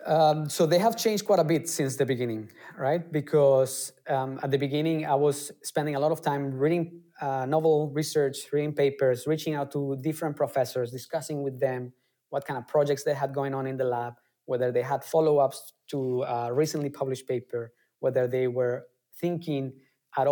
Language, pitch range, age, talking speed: English, 130-150 Hz, 20-39, 185 wpm